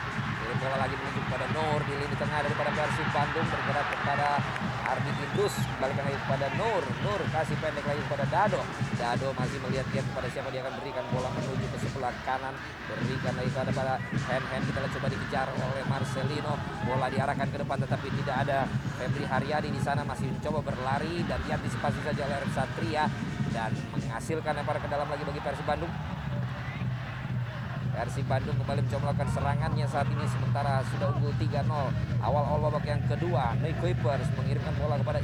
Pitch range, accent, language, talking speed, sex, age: 125-140 Hz, native, Indonesian, 165 wpm, male, 20-39